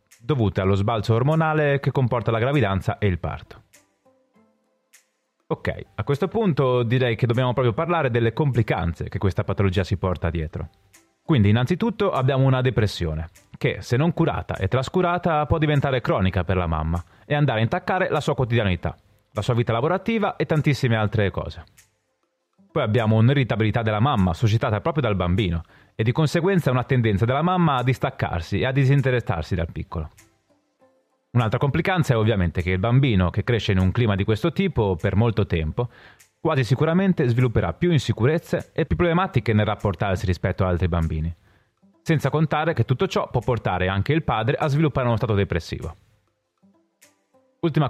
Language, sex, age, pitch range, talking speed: Italian, male, 30-49, 100-150 Hz, 165 wpm